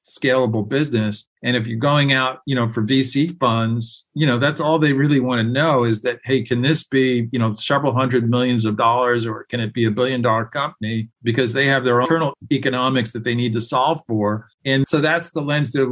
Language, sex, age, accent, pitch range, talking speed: English, male, 50-69, American, 115-135 Hz, 230 wpm